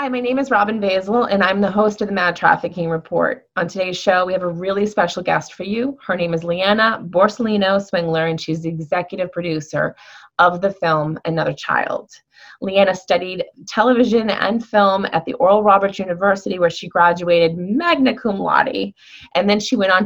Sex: female